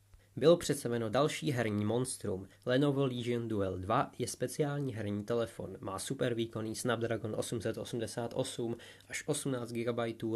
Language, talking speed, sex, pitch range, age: Czech, 120 wpm, male, 105-125 Hz, 20-39